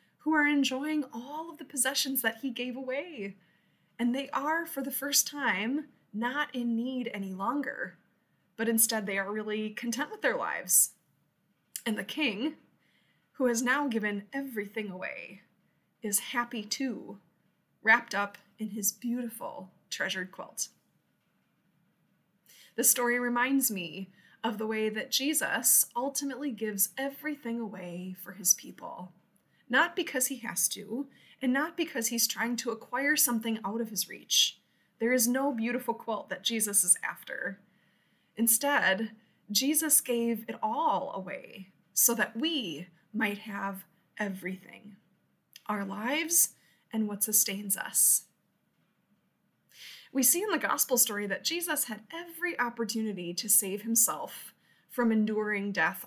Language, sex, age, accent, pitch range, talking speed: English, female, 20-39, American, 200-270 Hz, 135 wpm